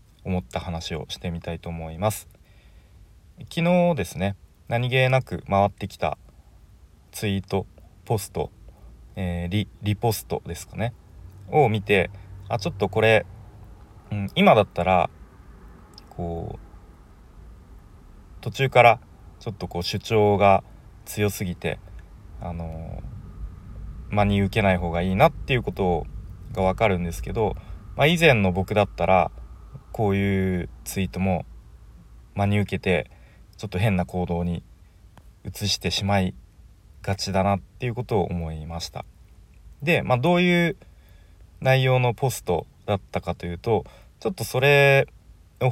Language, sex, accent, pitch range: Japanese, male, native, 85-105 Hz